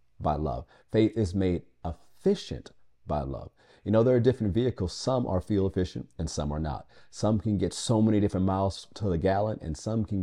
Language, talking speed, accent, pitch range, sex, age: English, 205 wpm, American, 80-105 Hz, male, 40-59